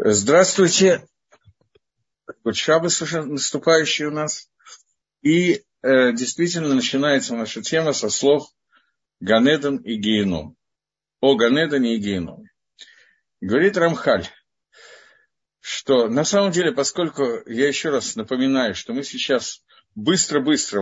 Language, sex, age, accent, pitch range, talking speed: Russian, male, 50-69, native, 120-165 Hz, 100 wpm